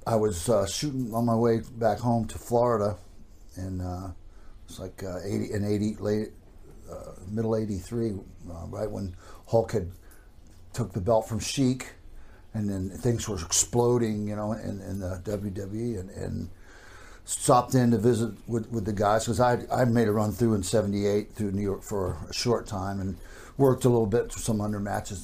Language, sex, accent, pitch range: English, male, American, 95-115 Hz